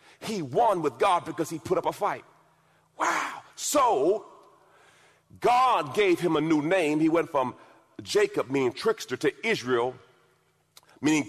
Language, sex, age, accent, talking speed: English, male, 40-59, American, 145 wpm